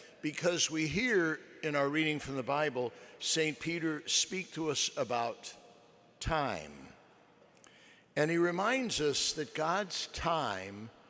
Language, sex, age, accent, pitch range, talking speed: English, male, 60-79, American, 130-170 Hz, 125 wpm